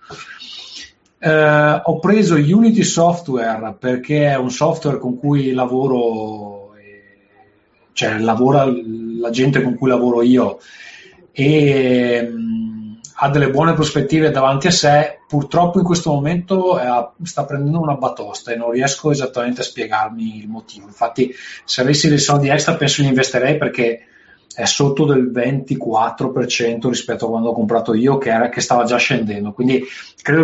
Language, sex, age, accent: Italian, male, 30-49, native